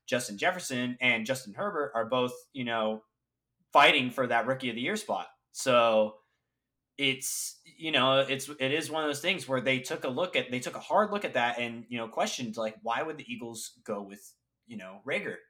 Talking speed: 215 wpm